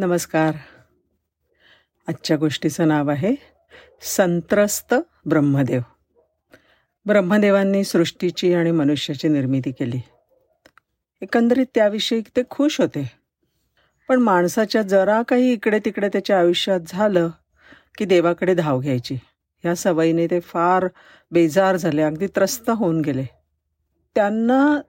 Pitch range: 155-215 Hz